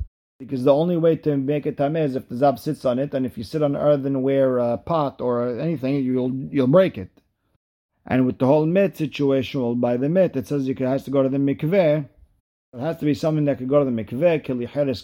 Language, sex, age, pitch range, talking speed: English, male, 40-59, 120-145 Hz, 245 wpm